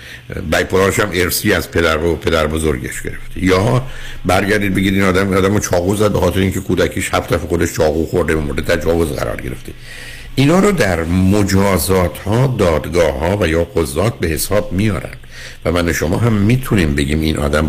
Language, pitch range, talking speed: Persian, 80-105 Hz, 180 wpm